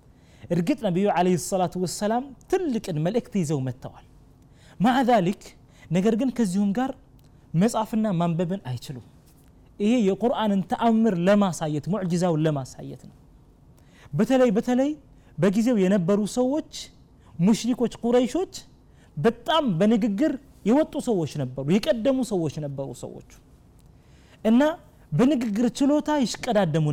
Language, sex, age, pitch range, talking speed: Amharic, male, 30-49, 145-235 Hz, 90 wpm